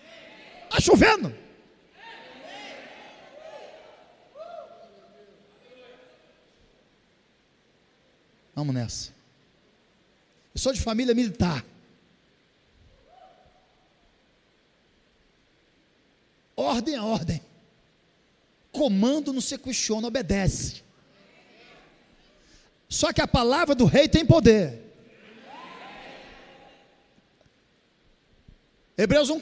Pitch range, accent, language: 225-290 Hz, Brazilian, Portuguese